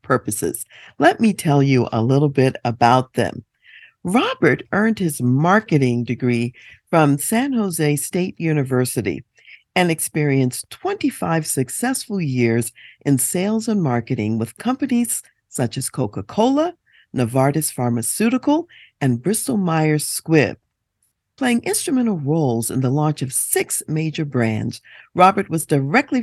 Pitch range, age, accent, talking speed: 125-190 Hz, 50-69, American, 125 wpm